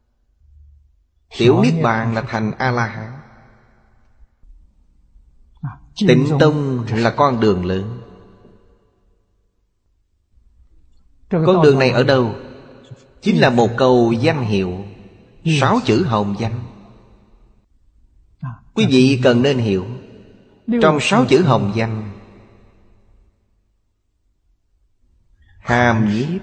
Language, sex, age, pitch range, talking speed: Vietnamese, male, 30-49, 95-125 Hz, 85 wpm